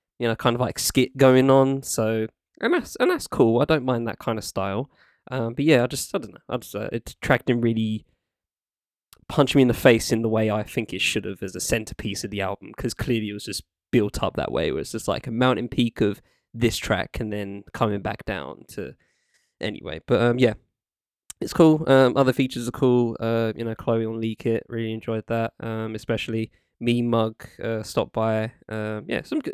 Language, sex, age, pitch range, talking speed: English, male, 10-29, 110-140 Hz, 225 wpm